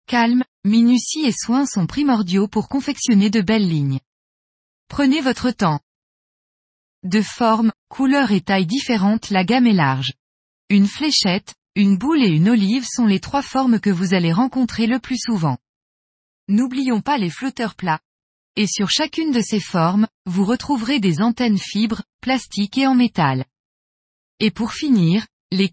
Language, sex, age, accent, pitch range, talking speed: French, female, 20-39, French, 185-250 Hz, 155 wpm